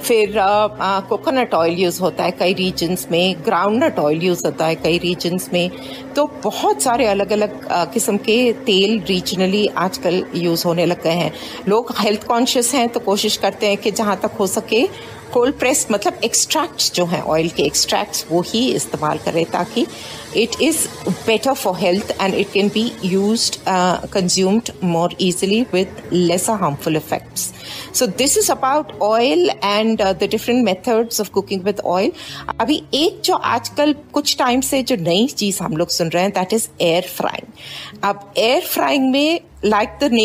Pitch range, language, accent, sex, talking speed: 180-235 Hz, Hindi, native, female, 155 wpm